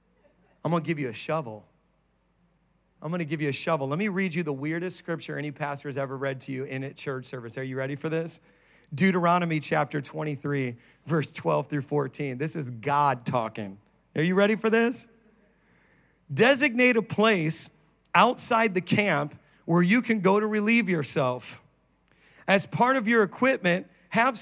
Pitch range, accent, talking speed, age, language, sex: 155-220 Hz, American, 170 wpm, 40-59, English, male